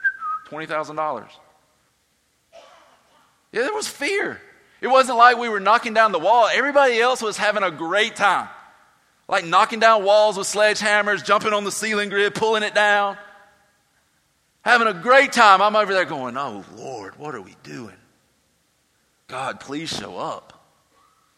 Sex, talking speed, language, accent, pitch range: male, 155 wpm, English, American, 140-210 Hz